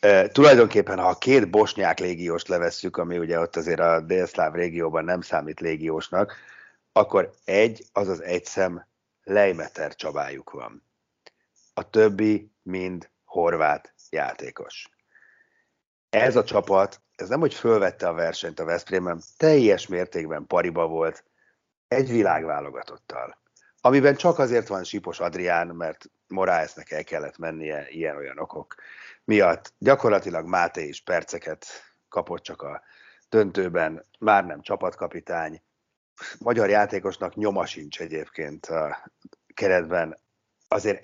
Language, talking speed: Hungarian, 115 wpm